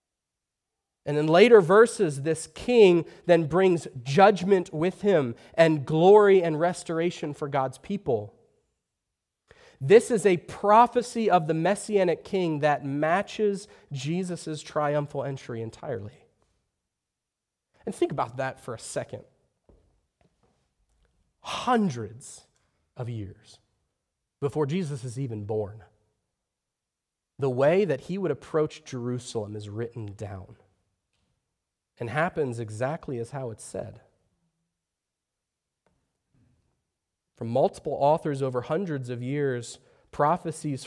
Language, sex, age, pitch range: English, male, 30-49, 120-180 Hz